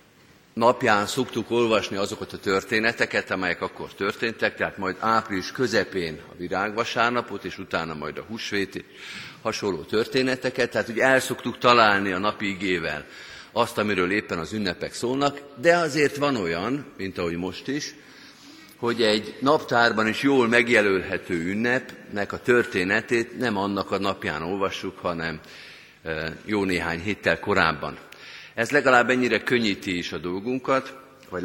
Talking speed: 135 wpm